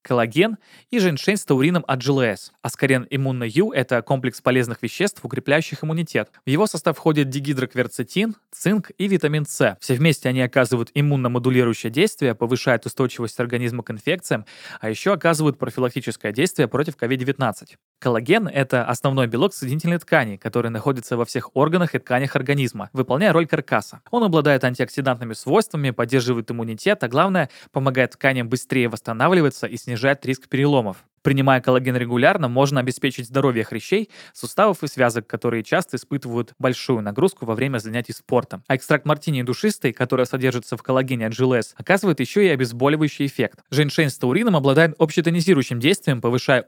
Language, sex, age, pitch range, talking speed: Russian, male, 20-39, 120-150 Hz, 150 wpm